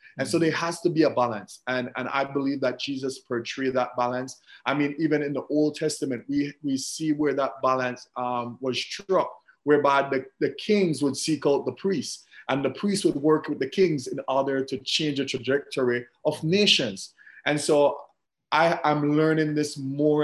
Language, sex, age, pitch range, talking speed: English, male, 30-49, 130-150 Hz, 190 wpm